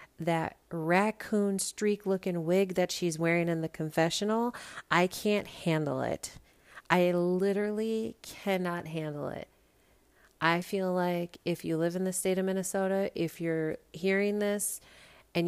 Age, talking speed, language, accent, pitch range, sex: 40-59, 140 wpm, English, American, 160-200 Hz, female